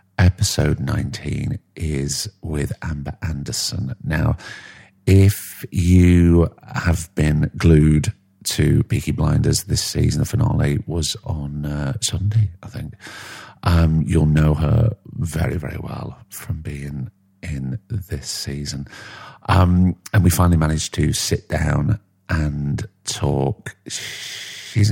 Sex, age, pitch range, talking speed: male, 50-69, 75-105 Hz, 115 wpm